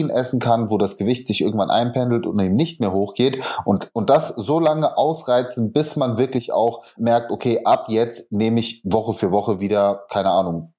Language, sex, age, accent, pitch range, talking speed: German, male, 30-49, German, 105-125 Hz, 195 wpm